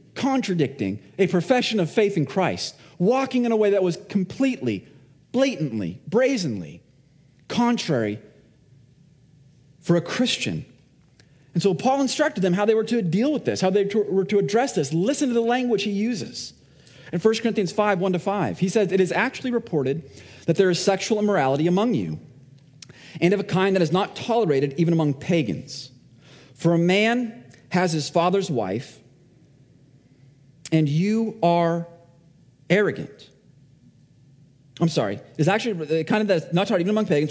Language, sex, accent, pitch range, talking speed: English, male, American, 140-205 Hz, 160 wpm